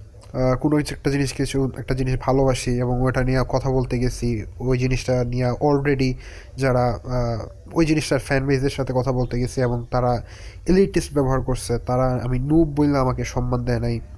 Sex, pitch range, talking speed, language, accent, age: male, 115-140 Hz, 160 wpm, Bengali, native, 30-49